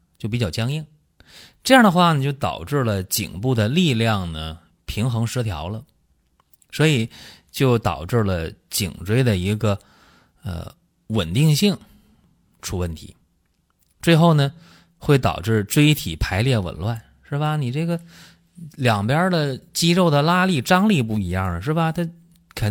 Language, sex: Chinese, male